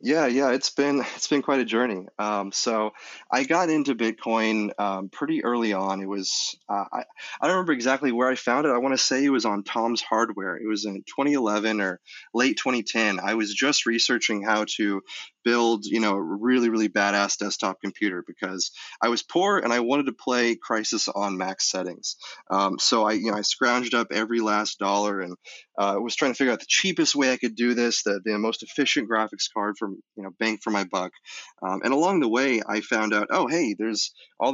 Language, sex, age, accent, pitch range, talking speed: English, male, 30-49, American, 100-120 Hz, 215 wpm